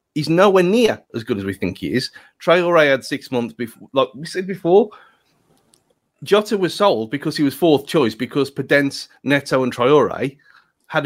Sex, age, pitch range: male, 30-49, 150-220 Hz